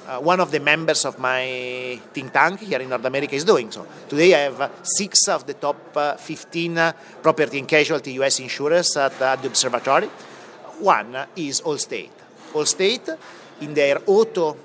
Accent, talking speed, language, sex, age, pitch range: Italian, 180 wpm, English, male, 40-59, 135-175 Hz